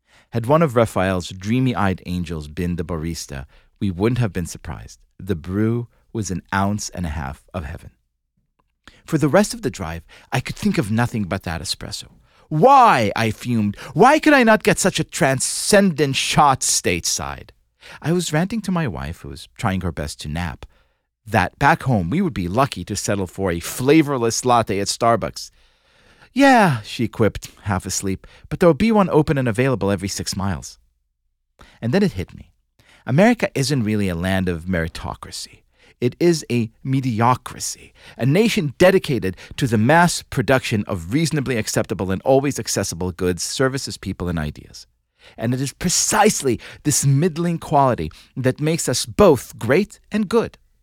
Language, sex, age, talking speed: English, male, 30-49, 170 wpm